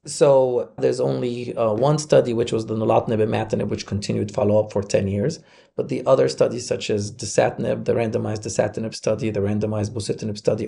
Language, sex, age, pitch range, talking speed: English, male, 30-49, 110-140 Hz, 185 wpm